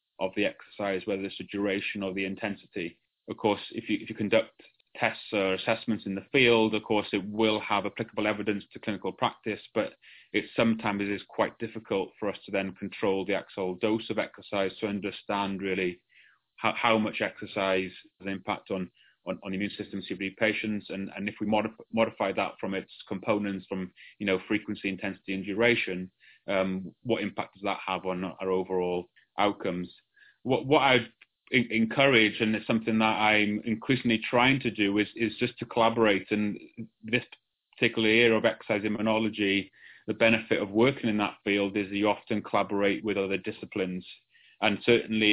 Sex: male